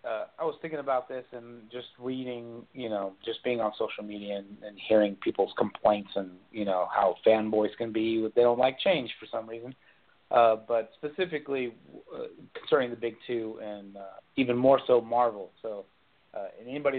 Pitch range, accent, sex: 110-135 Hz, American, male